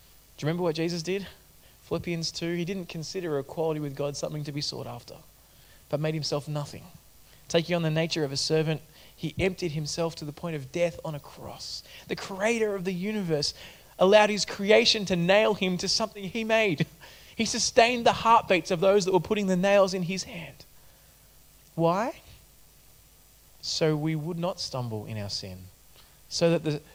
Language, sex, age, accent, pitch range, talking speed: English, male, 20-39, Australian, 150-190 Hz, 185 wpm